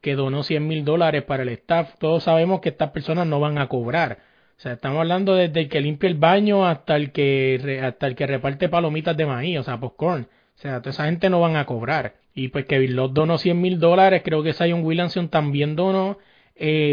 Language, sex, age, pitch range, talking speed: Spanish, male, 20-39, 140-180 Hz, 225 wpm